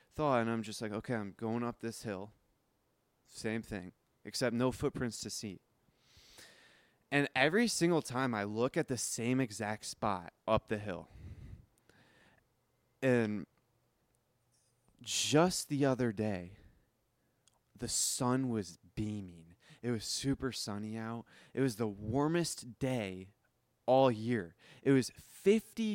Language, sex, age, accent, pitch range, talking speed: English, male, 20-39, American, 110-140 Hz, 130 wpm